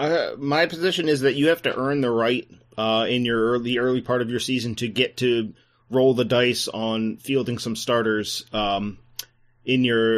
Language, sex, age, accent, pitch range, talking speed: English, male, 30-49, American, 115-125 Hz, 195 wpm